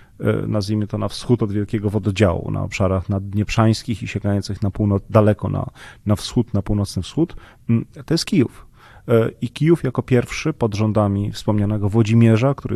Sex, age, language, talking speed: male, 30-49, Polish, 160 wpm